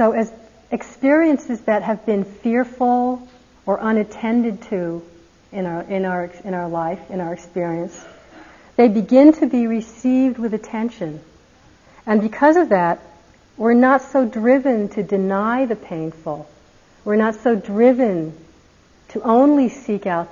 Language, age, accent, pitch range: English, 50-69, American, 180-235 Hz